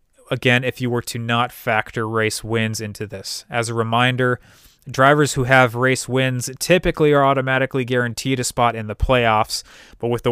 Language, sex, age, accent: English, male, 30-49, American